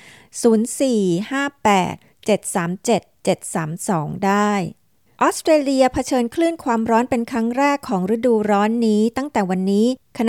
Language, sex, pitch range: Thai, female, 195-245 Hz